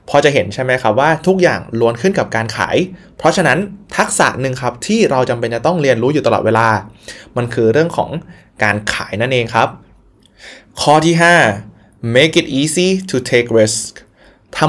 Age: 20-39